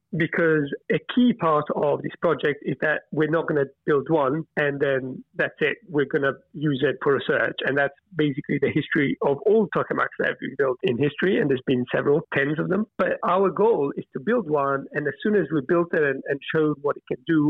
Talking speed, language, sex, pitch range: 235 wpm, English, male, 145-185 Hz